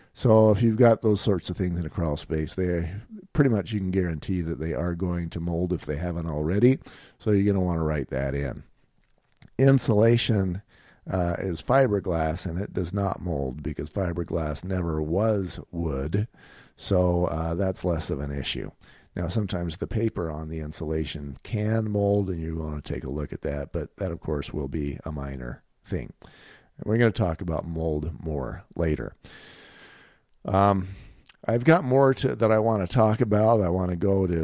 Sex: male